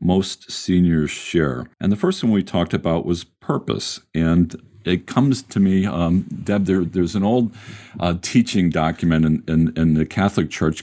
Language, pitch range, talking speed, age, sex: English, 80-100 Hz, 175 wpm, 50-69, male